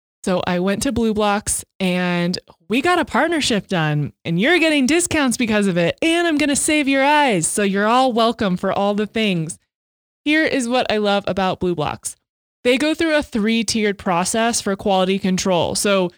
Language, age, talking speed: English, 20-39, 195 wpm